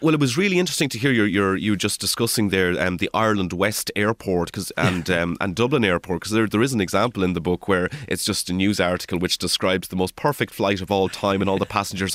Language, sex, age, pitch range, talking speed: English, male, 30-49, 90-110 Hz, 250 wpm